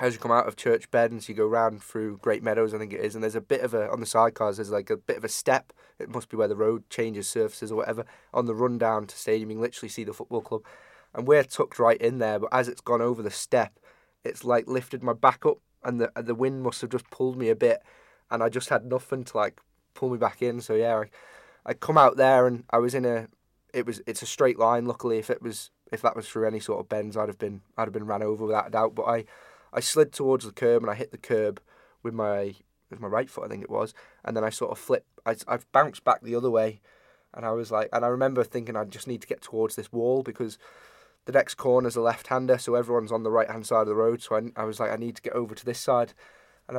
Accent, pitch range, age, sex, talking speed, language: British, 110-130 Hz, 10-29, male, 285 wpm, English